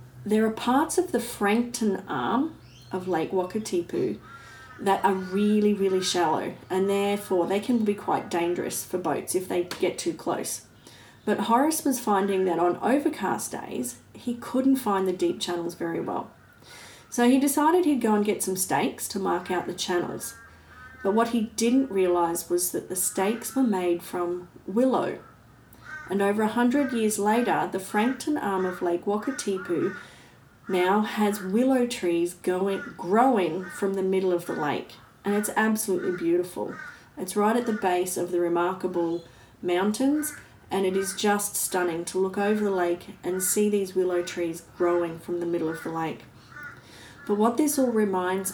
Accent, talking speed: Australian, 170 wpm